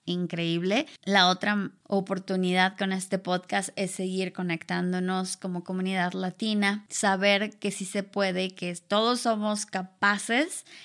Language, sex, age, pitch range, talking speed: Spanish, female, 20-39, 185-205 Hz, 120 wpm